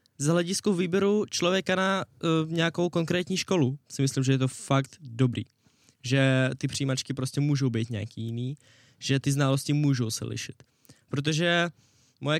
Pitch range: 125-165 Hz